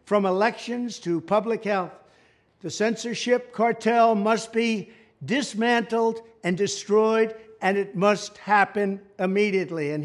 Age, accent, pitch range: 60-79, American, 200-230 Hz